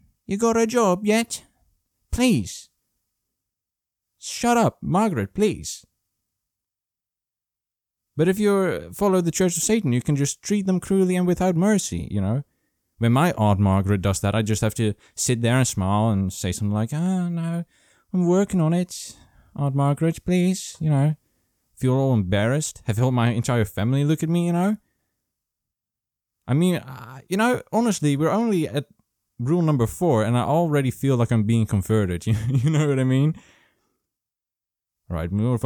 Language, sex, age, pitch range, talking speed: English, male, 20-39, 110-180 Hz, 170 wpm